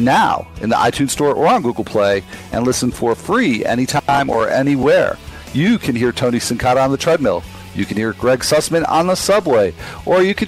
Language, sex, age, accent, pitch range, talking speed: English, male, 40-59, American, 110-150 Hz, 200 wpm